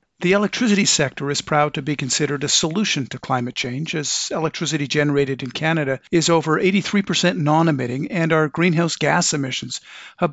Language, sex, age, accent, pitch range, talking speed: English, male, 50-69, American, 140-175 Hz, 165 wpm